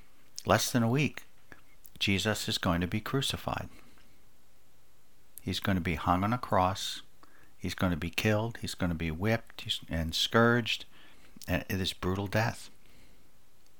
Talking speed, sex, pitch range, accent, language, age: 150 wpm, male, 90-105 Hz, American, English, 60-79